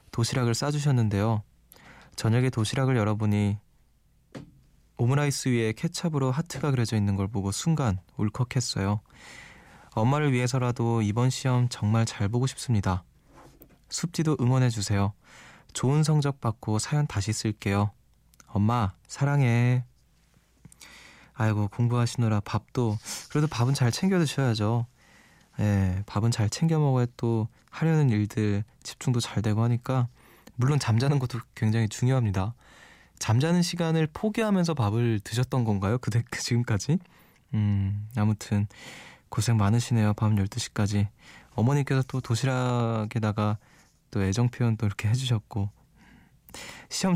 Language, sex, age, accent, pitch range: Korean, male, 20-39, native, 105-135 Hz